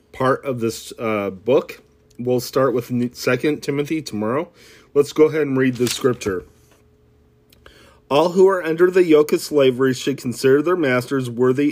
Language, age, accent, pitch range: English, 40-59, American, 120-150 Hz